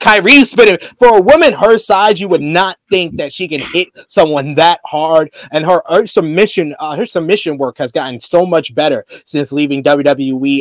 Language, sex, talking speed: English, male, 190 wpm